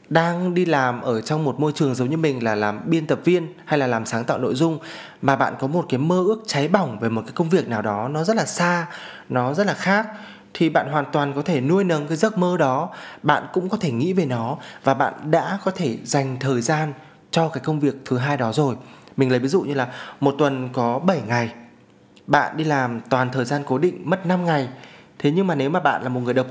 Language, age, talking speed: Vietnamese, 20-39, 260 wpm